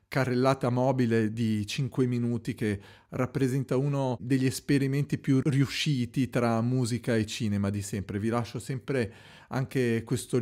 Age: 40-59